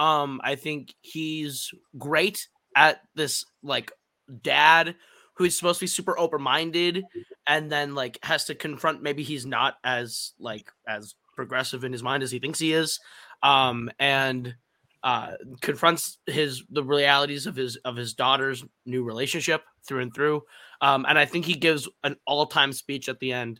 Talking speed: 170 wpm